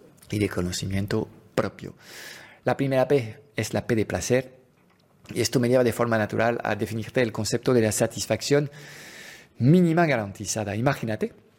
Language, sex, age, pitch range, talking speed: Spanish, male, 50-69, 110-145 Hz, 150 wpm